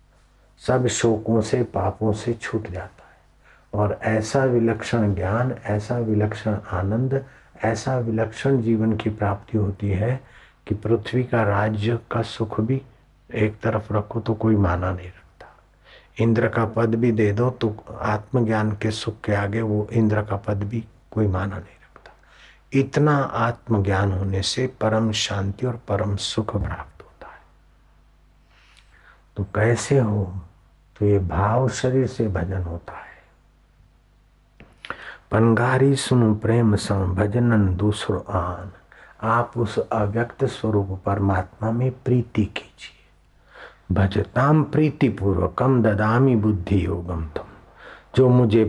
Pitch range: 95-120 Hz